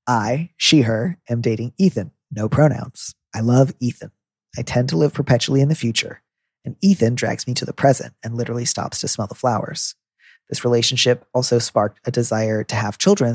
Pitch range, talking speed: 115-135 Hz, 190 wpm